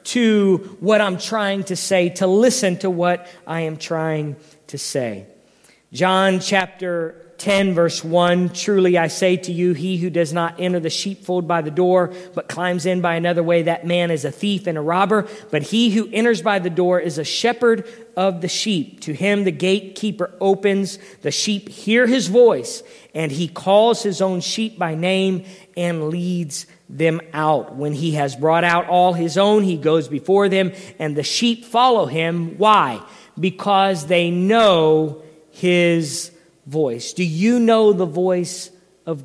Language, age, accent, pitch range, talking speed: English, 40-59, American, 165-200 Hz, 175 wpm